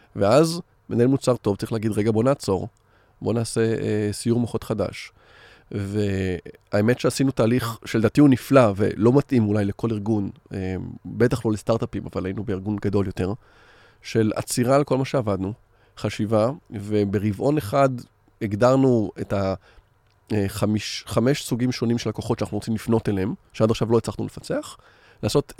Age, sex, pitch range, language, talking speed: 30-49, male, 105-145 Hz, Hebrew, 145 wpm